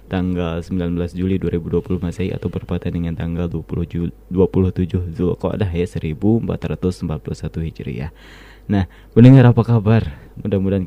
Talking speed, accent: 125 wpm, native